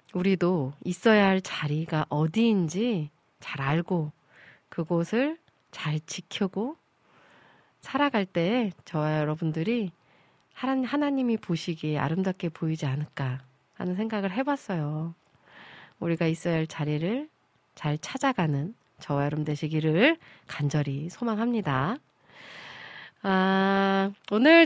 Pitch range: 155-220 Hz